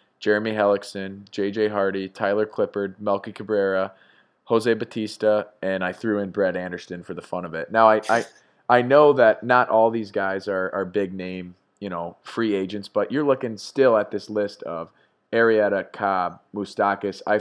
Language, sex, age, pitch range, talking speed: English, male, 20-39, 90-105 Hz, 175 wpm